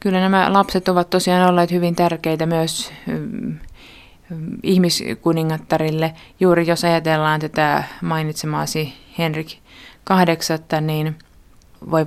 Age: 20-39